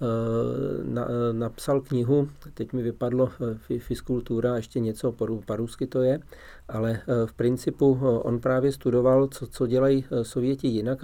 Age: 40-59